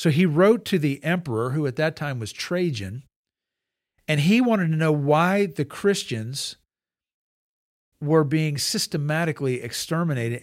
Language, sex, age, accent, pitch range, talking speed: English, male, 50-69, American, 135-170 Hz, 140 wpm